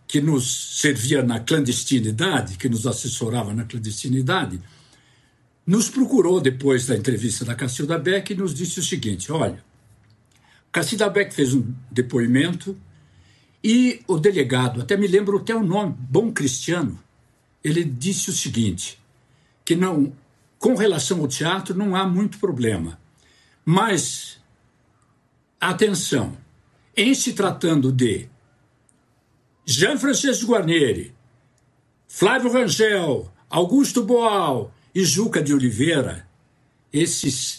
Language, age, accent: Portuguese, 60-79, Brazilian